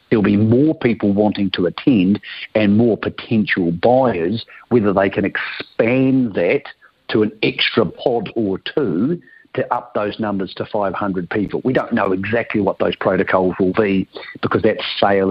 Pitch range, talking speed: 100-120 Hz, 160 wpm